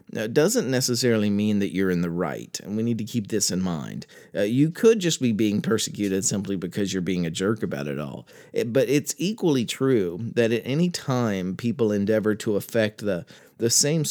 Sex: male